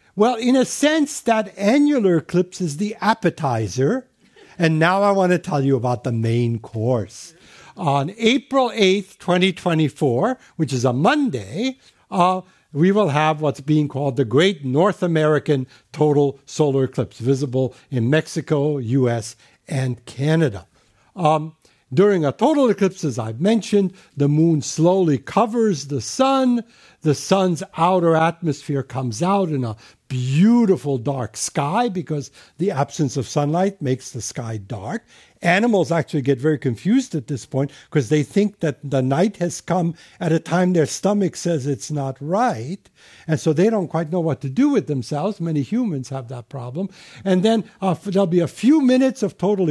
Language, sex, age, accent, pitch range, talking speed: English, male, 60-79, American, 140-195 Hz, 160 wpm